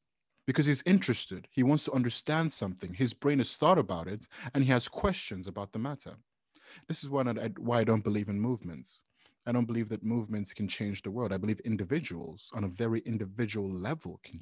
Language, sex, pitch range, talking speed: English, male, 100-120 Hz, 210 wpm